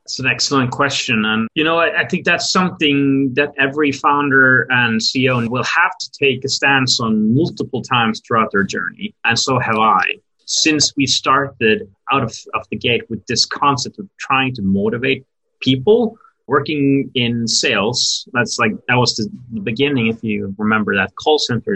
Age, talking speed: 30-49, 175 wpm